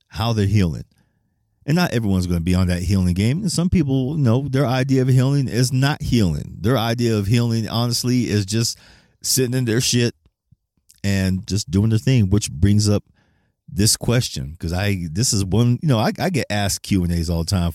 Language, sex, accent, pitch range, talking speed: English, male, American, 95-115 Hz, 210 wpm